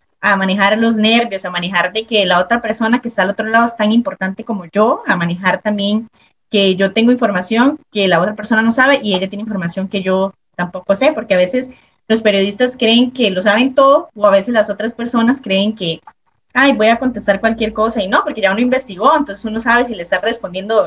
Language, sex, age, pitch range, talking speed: Spanish, female, 20-39, 190-235 Hz, 225 wpm